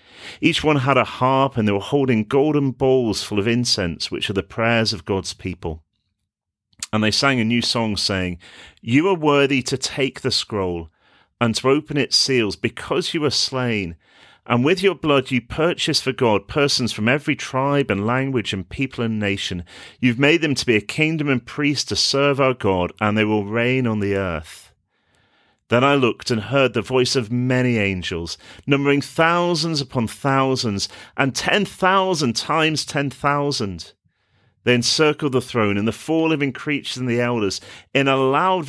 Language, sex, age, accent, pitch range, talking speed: English, male, 40-59, British, 105-145 Hz, 180 wpm